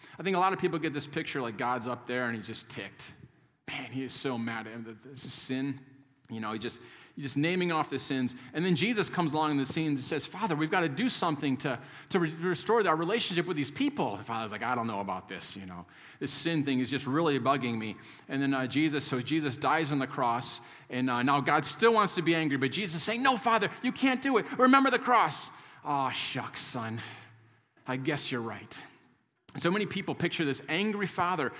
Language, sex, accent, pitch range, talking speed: English, male, American, 130-185 Hz, 235 wpm